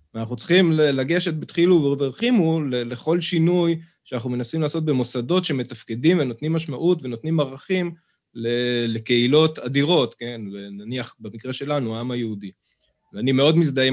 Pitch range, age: 120-160 Hz, 20-39